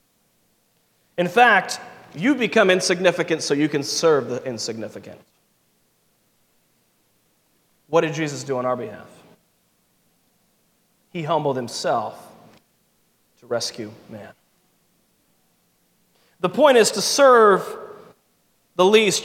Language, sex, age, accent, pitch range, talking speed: English, male, 30-49, American, 155-205 Hz, 95 wpm